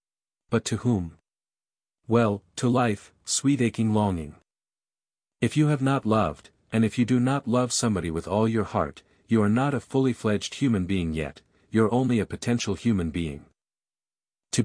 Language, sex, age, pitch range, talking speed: Vietnamese, male, 50-69, 95-125 Hz, 165 wpm